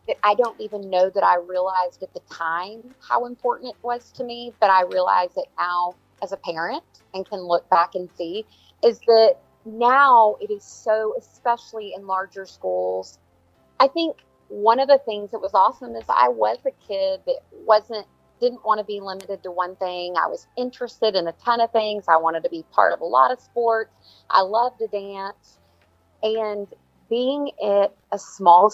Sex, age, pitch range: female, 30-49, 185-240 Hz